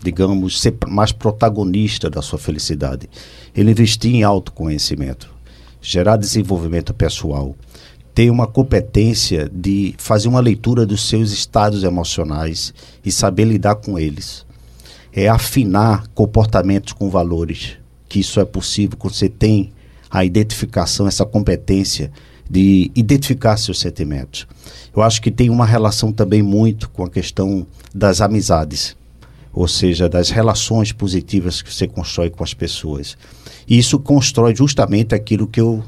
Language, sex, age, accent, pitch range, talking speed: Portuguese, male, 50-69, Brazilian, 90-110 Hz, 135 wpm